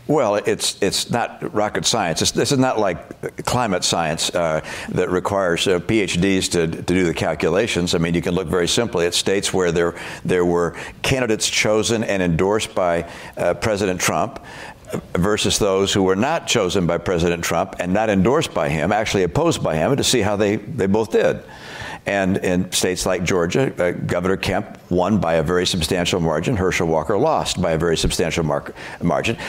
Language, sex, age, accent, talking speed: English, male, 60-79, American, 185 wpm